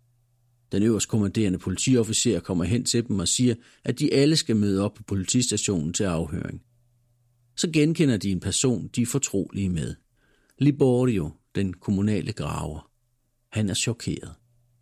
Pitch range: 100-120 Hz